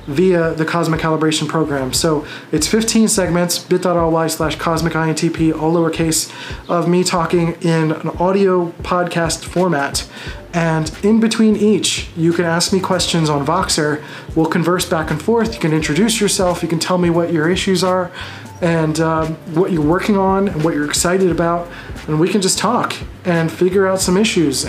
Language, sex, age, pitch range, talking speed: English, male, 30-49, 155-180 Hz, 175 wpm